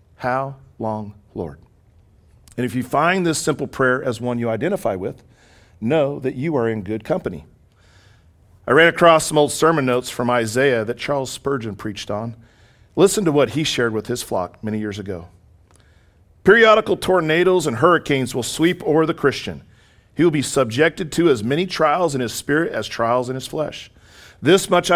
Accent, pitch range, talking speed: American, 110-160 Hz, 180 wpm